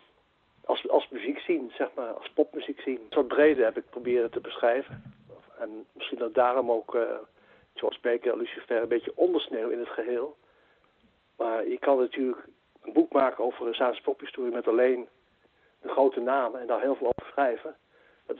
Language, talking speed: Dutch, 175 wpm